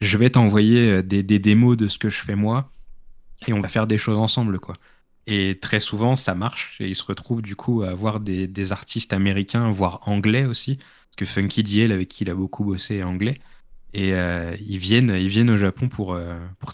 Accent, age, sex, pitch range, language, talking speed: French, 20-39, male, 95-115 Hz, French, 220 wpm